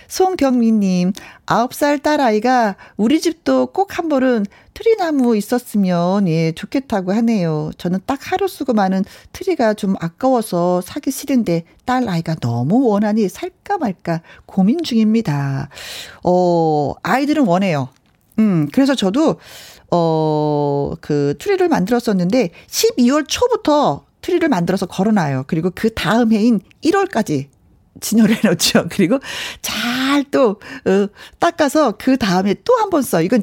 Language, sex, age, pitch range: Korean, female, 40-59, 175-265 Hz